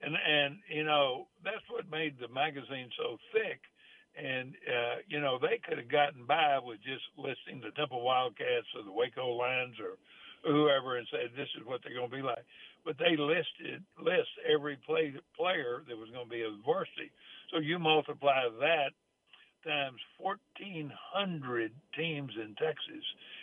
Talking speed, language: 170 wpm, English